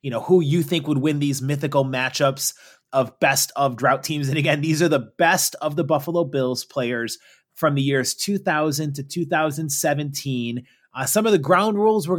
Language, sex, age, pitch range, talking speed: English, male, 30-49, 135-170 Hz, 190 wpm